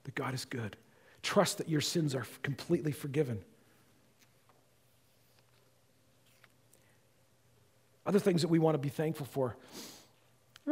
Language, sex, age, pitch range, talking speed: English, male, 40-59, 125-160 Hz, 125 wpm